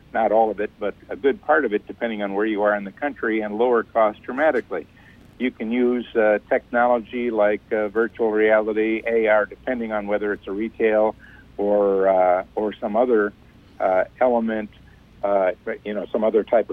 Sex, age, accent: male, 60-79, American